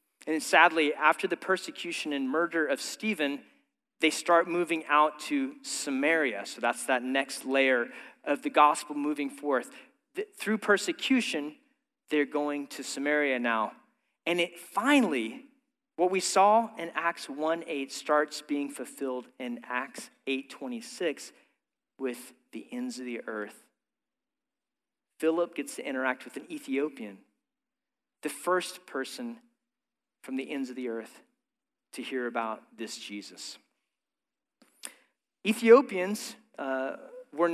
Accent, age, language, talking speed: American, 40-59, English, 125 wpm